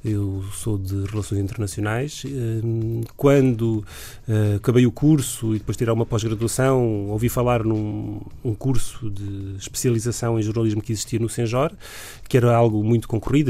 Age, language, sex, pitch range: 30-49, Portuguese, male, 110-140 Hz